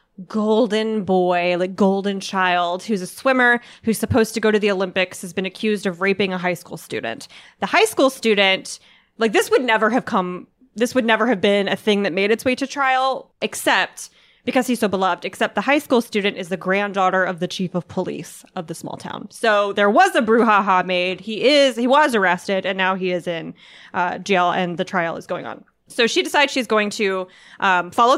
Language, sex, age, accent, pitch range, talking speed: English, female, 20-39, American, 185-245 Hz, 215 wpm